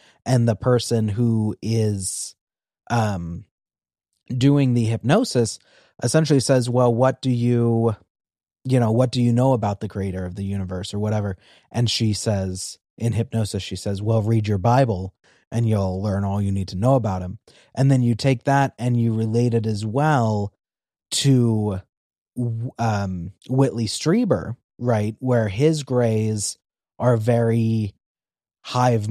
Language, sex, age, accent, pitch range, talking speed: English, male, 30-49, American, 105-125 Hz, 150 wpm